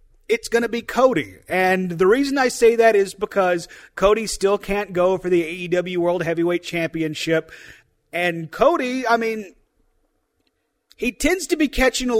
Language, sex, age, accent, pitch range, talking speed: English, male, 30-49, American, 155-195 Hz, 160 wpm